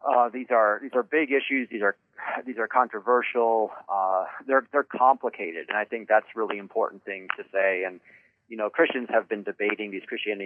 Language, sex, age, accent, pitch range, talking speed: English, male, 30-49, American, 105-130 Hz, 195 wpm